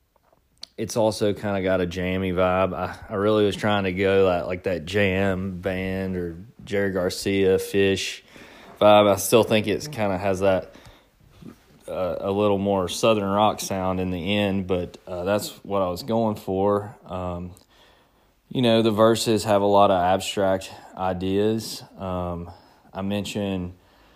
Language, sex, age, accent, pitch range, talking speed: English, male, 20-39, American, 85-100 Hz, 160 wpm